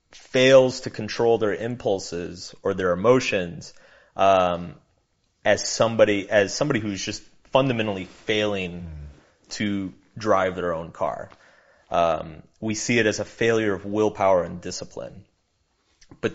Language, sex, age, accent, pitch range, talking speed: Hindi, male, 30-49, American, 95-120 Hz, 125 wpm